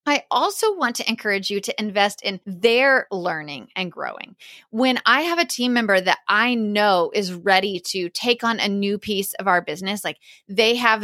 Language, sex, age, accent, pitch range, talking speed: English, female, 30-49, American, 190-245 Hz, 195 wpm